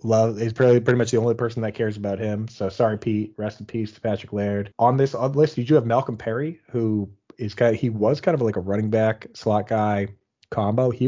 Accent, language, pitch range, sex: American, English, 100-120 Hz, male